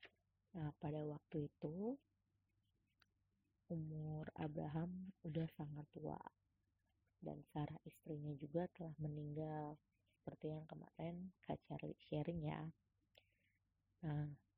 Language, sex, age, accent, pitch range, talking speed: Indonesian, female, 20-39, native, 105-165 Hz, 95 wpm